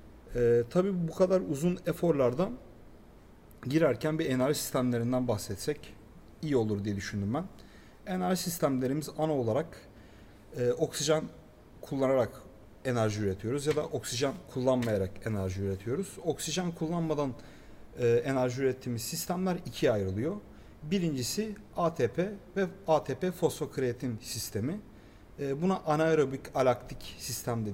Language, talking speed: Turkish, 110 wpm